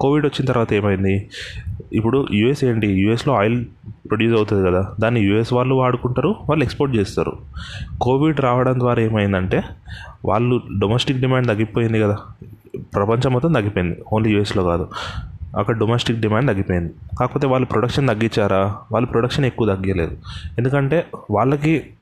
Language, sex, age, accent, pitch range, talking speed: Telugu, male, 30-49, native, 100-125 Hz, 130 wpm